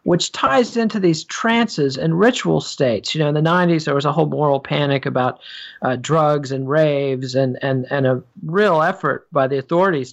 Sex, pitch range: male, 140-175 Hz